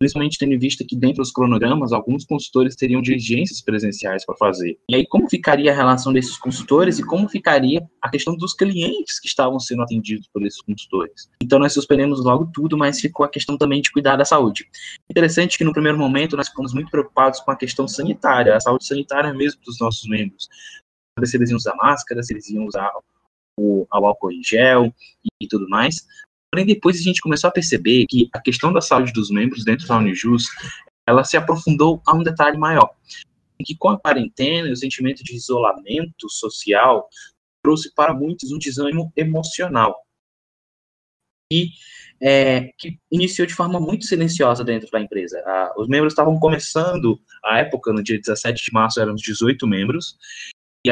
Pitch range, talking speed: 120-155 Hz, 185 wpm